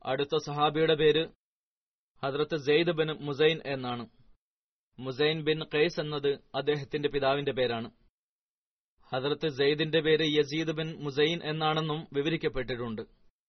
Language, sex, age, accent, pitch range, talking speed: Malayalam, male, 20-39, native, 135-155 Hz, 80 wpm